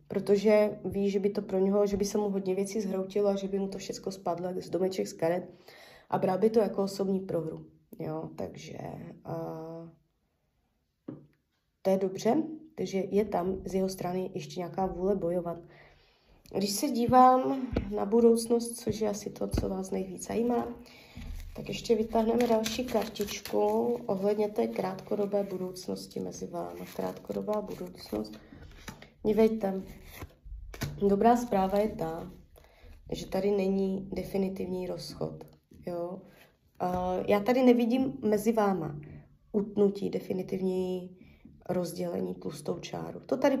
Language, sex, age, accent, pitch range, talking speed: Czech, female, 20-39, native, 175-215 Hz, 135 wpm